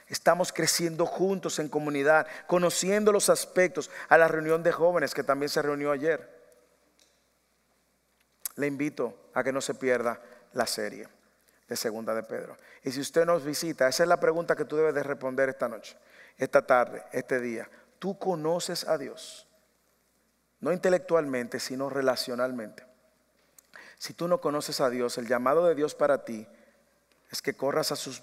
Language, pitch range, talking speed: English, 135-170 Hz, 160 wpm